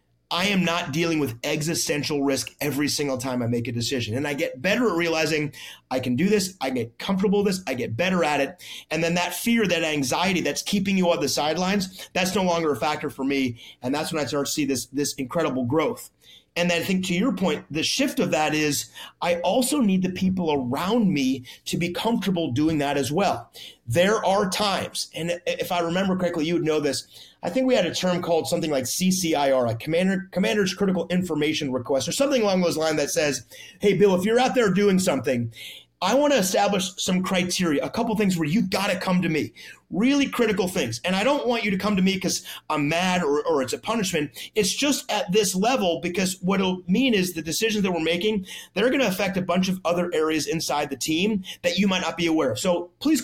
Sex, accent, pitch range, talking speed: male, American, 150-200 Hz, 230 wpm